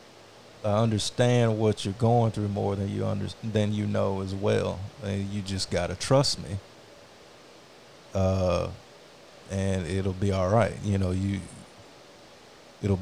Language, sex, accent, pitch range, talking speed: English, male, American, 100-110 Hz, 150 wpm